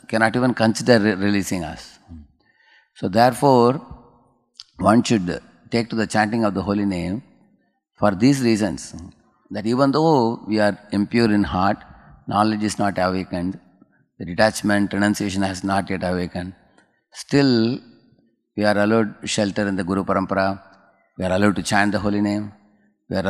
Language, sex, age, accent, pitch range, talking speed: English, male, 30-49, Indian, 95-110 Hz, 150 wpm